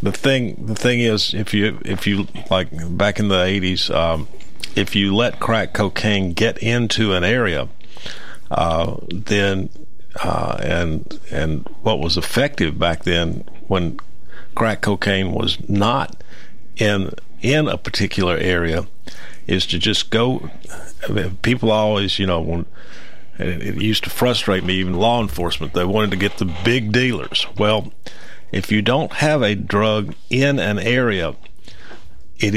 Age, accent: 50-69, American